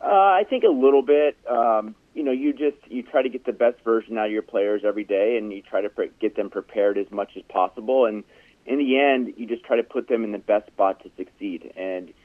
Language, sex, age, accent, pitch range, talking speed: English, male, 30-49, American, 100-115 Hz, 260 wpm